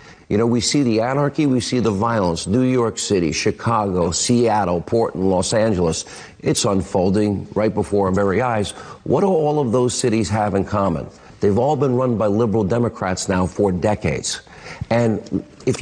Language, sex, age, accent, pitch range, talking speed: English, male, 50-69, American, 100-125 Hz, 175 wpm